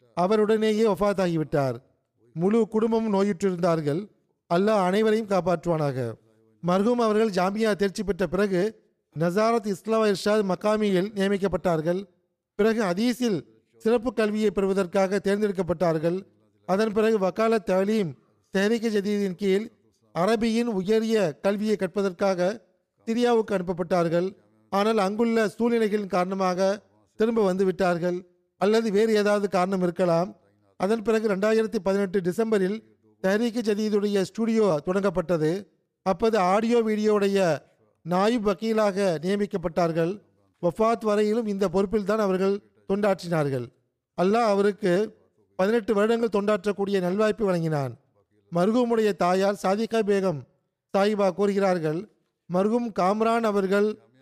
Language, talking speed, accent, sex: Tamil, 95 wpm, native, male